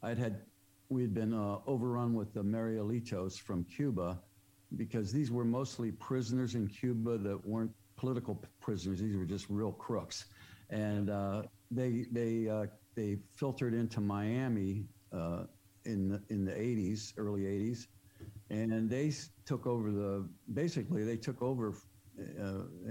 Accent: American